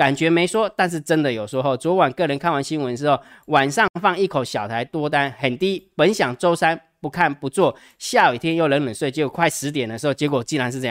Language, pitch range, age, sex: Chinese, 125-170 Hz, 20-39, male